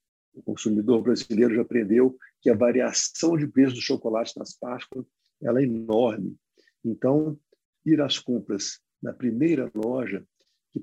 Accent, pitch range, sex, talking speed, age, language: Brazilian, 115-145 Hz, male, 135 wpm, 60-79, Portuguese